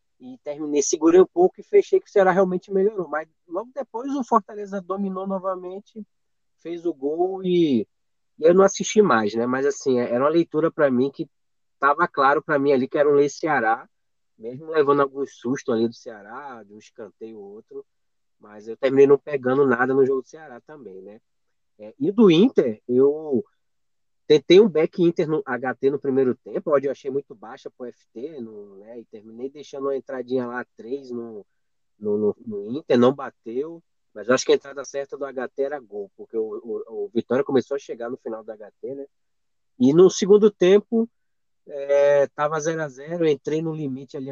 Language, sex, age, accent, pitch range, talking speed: Portuguese, male, 20-39, Brazilian, 130-195 Hz, 190 wpm